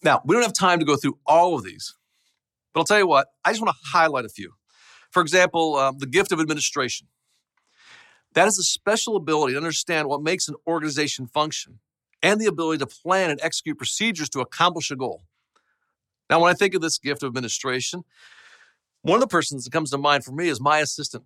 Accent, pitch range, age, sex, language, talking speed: American, 140-185 Hz, 40-59, male, English, 210 wpm